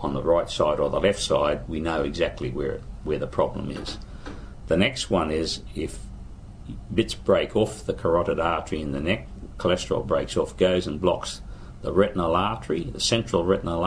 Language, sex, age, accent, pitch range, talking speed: English, male, 50-69, Australian, 80-100 Hz, 180 wpm